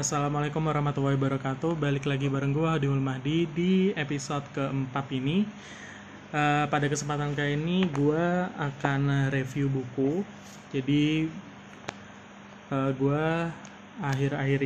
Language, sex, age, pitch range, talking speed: Indonesian, male, 20-39, 135-150 Hz, 100 wpm